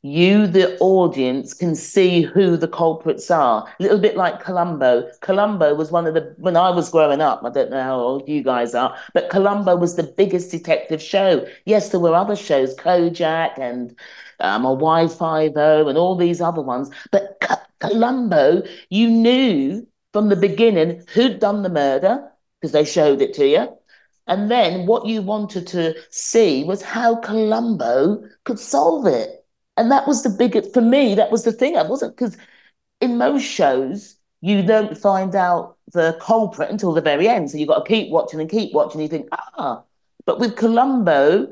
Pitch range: 160-215 Hz